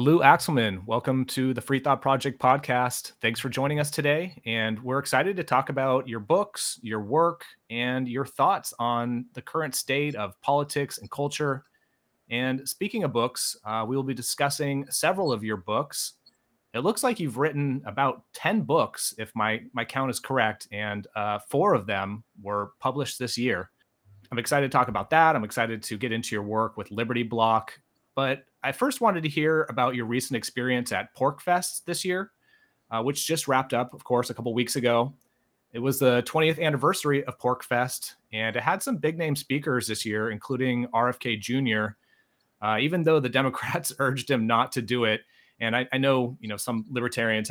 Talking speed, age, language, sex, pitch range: 190 wpm, 30-49, English, male, 115-140 Hz